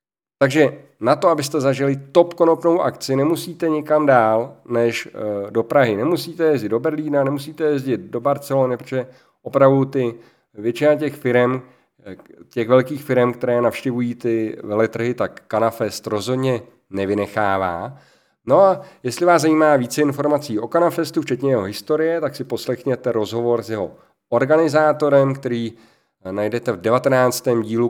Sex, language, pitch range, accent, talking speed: male, Czech, 115-150 Hz, native, 135 wpm